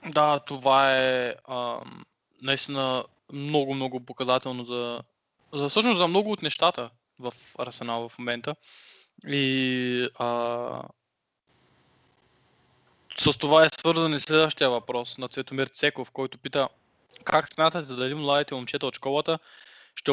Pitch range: 130-150 Hz